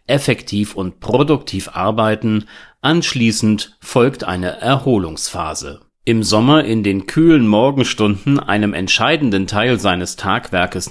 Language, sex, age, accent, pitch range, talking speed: German, male, 40-59, German, 95-135 Hz, 105 wpm